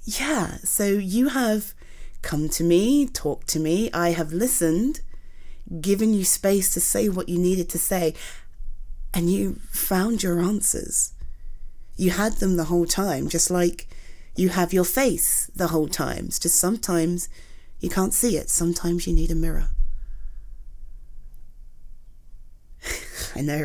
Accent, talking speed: British, 140 wpm